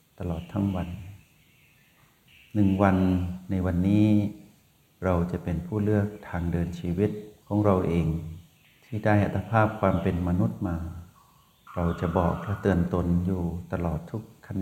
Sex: male